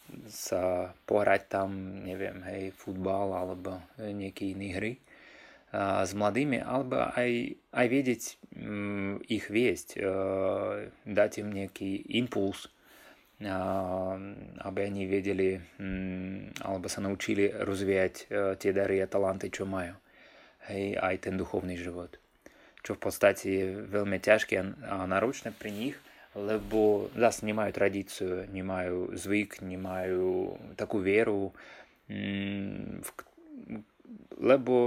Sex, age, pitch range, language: male, 20-39, 95-100 Hz, Slovak